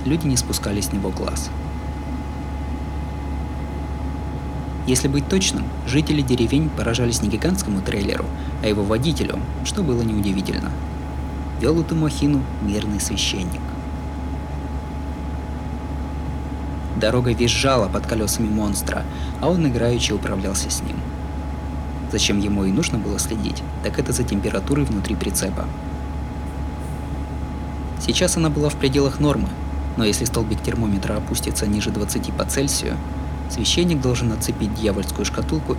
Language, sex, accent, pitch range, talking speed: Russian, male, native, 70-100 Hz, 115 wpm